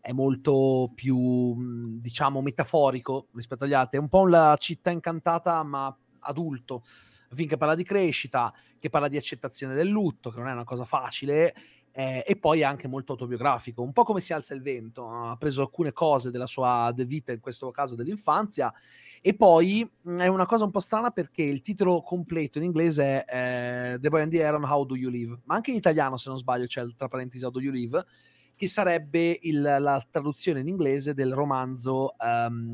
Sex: male